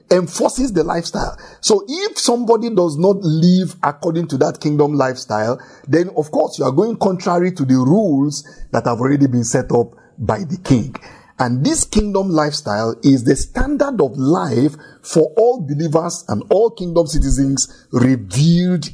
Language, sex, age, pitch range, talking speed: English, male, 50-69, 135-200 Hz, 160 wpm